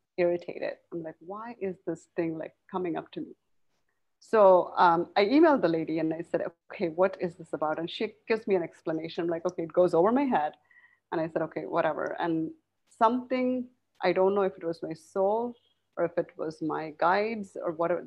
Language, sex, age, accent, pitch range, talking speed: English, female, 30-49, Indian, 165-200 Hz, 210 wpm